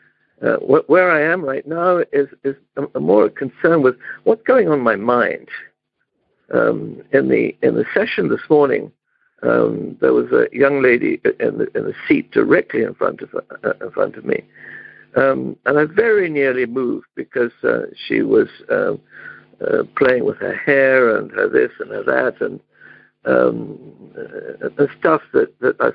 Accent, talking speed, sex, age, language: British, 180 wpm, male, 60-79, English